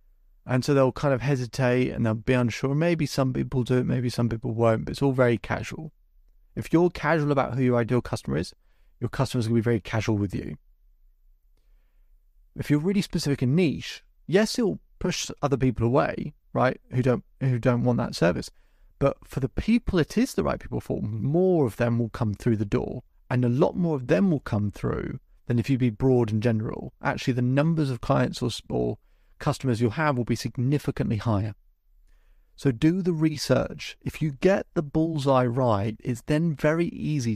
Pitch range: 115-150 Hz